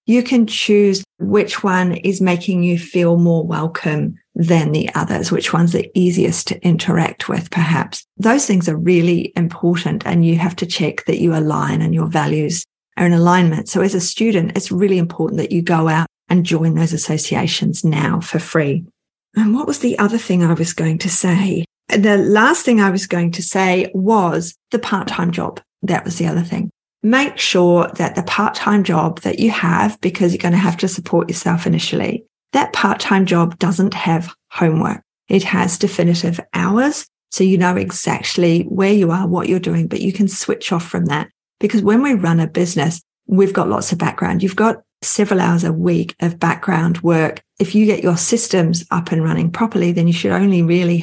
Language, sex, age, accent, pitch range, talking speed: English, female, 40-59, Australian, 170-195 Hz, 195 wpm